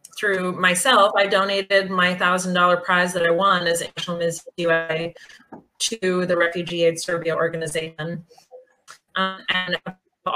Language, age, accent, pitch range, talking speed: English, 30-49, American, 175-210 Hz, 135 wpm